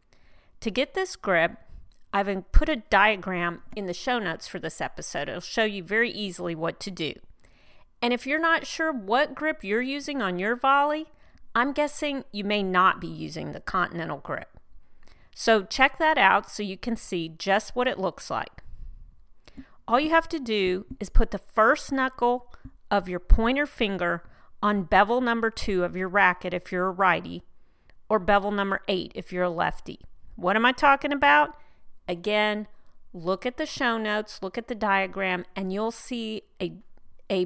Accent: American